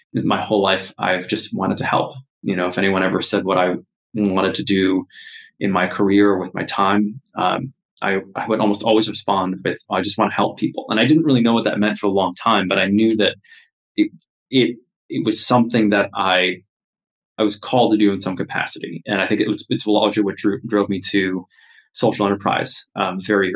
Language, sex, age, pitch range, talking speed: English, male, 20-39, 100-125 Hz, 220 wpm